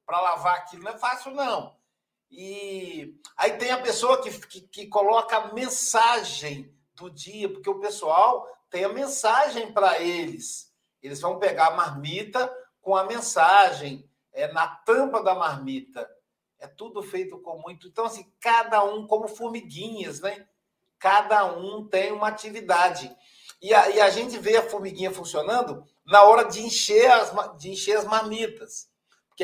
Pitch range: 185-230 Hz